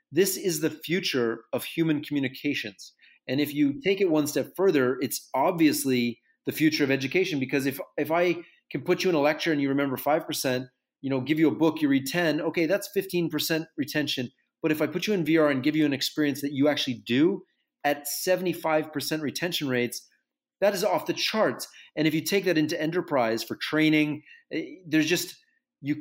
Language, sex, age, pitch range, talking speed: English, male, 30-49, 135-165 Hz, 195 wpm